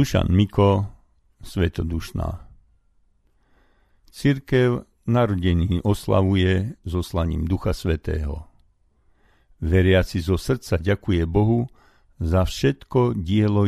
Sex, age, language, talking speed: male, 50-69, Slovak, 80 wpm